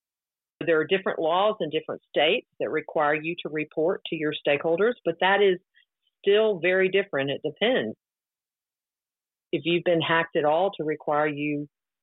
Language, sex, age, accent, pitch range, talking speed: English, female, 50-69, American, 155-190 Hz, 160 wpm